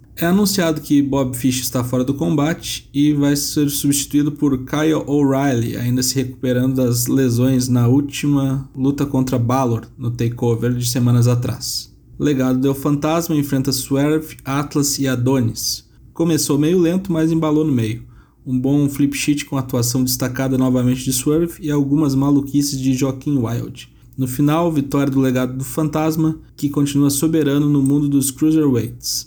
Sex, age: male, 20-39